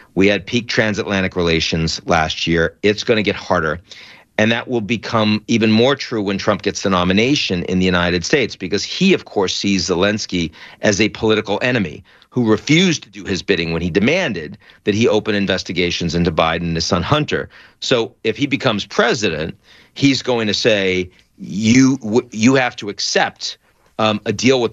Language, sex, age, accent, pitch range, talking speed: English, male, 40-59, American, 90-120 Hz, 180 wpm